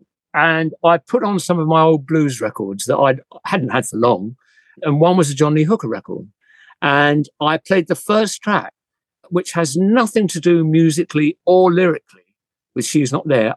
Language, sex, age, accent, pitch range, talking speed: English, male, 50-69, British, 130-175 Hz, 185 wpm